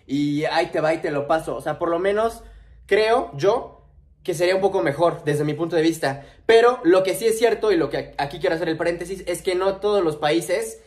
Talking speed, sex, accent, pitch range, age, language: 250 wpm, male, Mexican, 155-200 Hz, 20-39, English